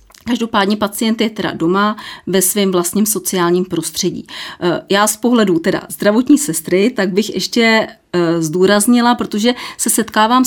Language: Czech